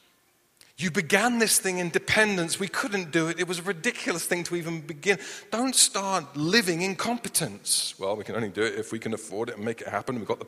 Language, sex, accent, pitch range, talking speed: English, male, British, 140-200 Hz, 230 wpm